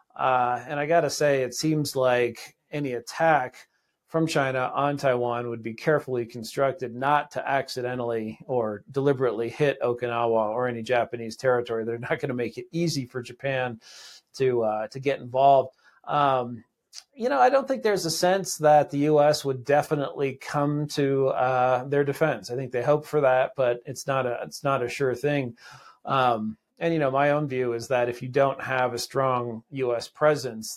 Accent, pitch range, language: American, 120-145 Hz, English